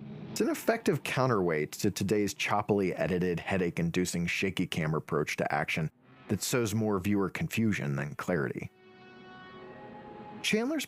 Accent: American